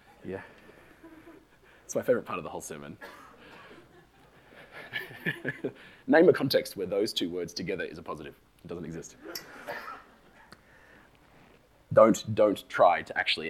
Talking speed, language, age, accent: 125 wpm, English, 30-49, Australian